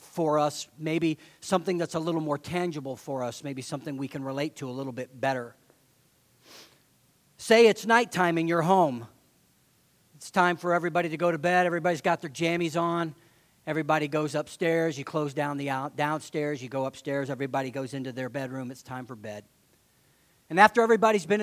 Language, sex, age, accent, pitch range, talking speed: English, male, 40-59, American, 135-210 Hz, 180 wpm